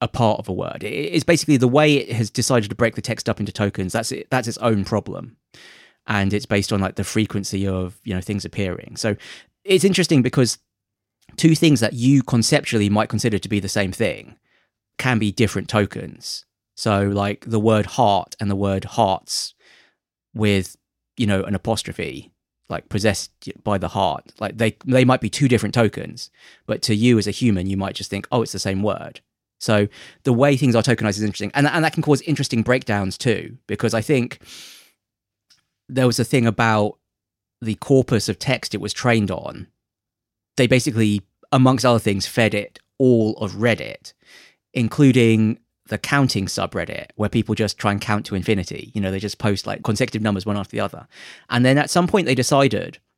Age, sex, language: 20-39, male, English